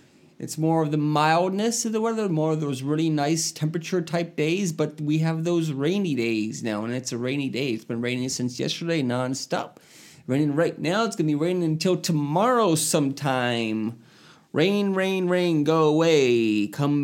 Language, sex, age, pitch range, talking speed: English, male, 30-49, 145-190 Hz, 175 wpm